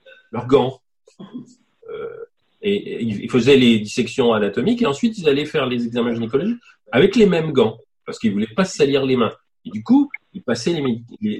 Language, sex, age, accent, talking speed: French, male, 40-59, French, 190 wpm